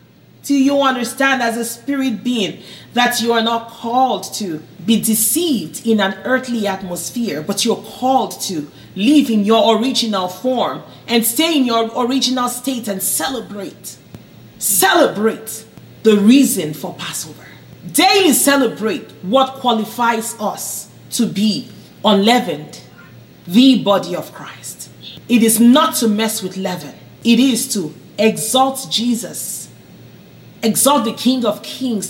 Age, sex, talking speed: 40-59, female, 130 wpm